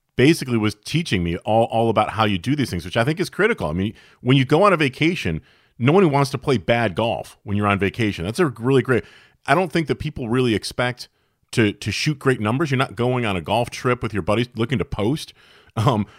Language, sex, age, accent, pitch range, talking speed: English, male, 40-59, American, 110-140 Hz, 245 wpm